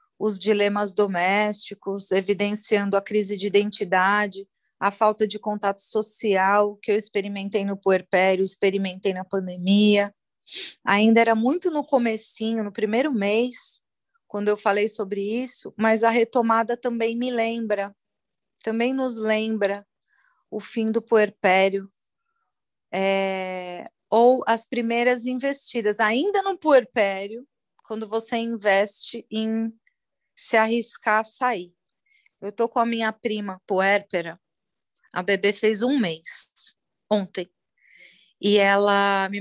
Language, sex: Portuguese, female